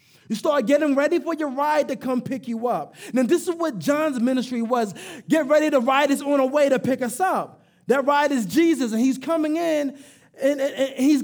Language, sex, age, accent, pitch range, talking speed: English, male, 20-39, American, 255-320 Hz, 220 wpm